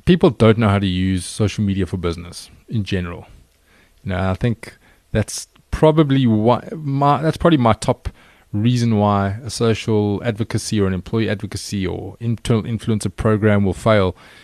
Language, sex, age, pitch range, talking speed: English, male, 20-39, 100-125 Hz, 160 wpm